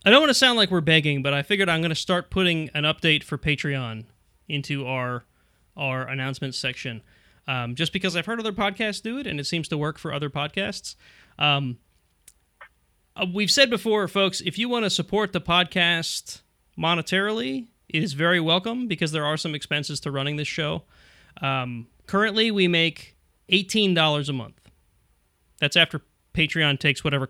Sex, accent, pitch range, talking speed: male, American, 130-175 Hz, 175 wpm